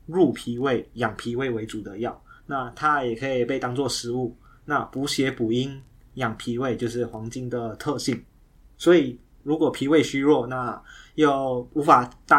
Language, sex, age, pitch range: Chinese, male, 20-39, 120-140 Hz